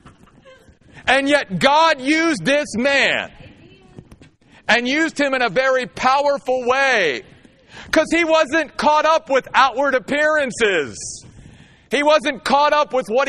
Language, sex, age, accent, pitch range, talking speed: English, male, 40-59, American, 190-275 Hz, 125 wpm